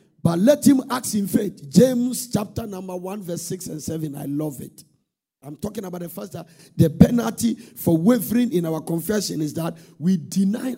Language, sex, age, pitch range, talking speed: English, male, 50-69, 160-220 Hz, 185 wpm